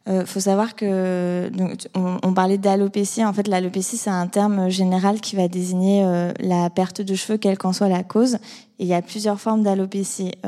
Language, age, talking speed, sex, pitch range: French, 20-39, 200 wpm, female, 180-200 Hz